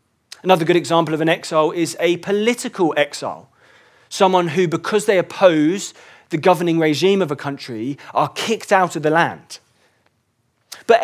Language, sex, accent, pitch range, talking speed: English, male, British, 135-195 Hz, 150 wpm